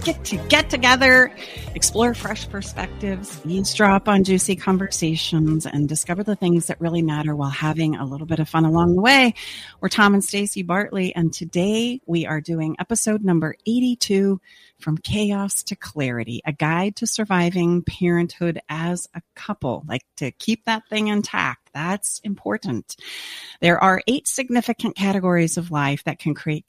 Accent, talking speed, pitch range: American, 160 wpm, 155-205 Hz